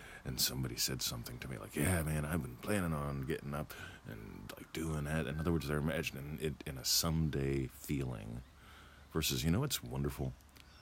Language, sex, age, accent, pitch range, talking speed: English, male, 40-59, American, 70-85 Hz, 190 wpm